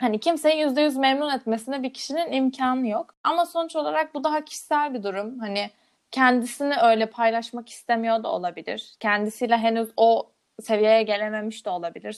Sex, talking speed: female, 160 wpm